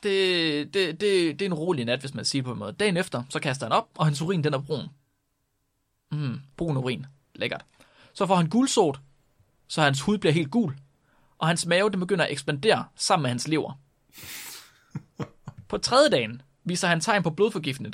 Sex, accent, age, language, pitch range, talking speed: male, native, 30-49, Danish, 140-195 Hz, 195 wpm